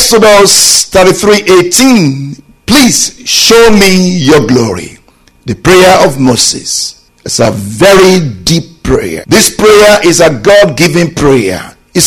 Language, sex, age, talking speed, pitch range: English, male, 50-69, 120 wpm, 165-230 Hz